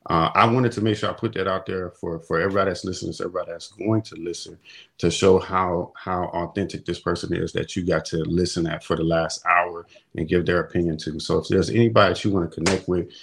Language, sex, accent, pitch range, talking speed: English, male, American, 85-105 Hz, 250 wpm